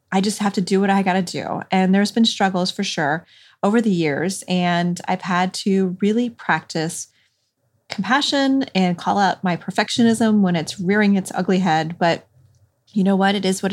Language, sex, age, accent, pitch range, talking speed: English, female, 30-49, American, 175-215 Hz, 190 wpm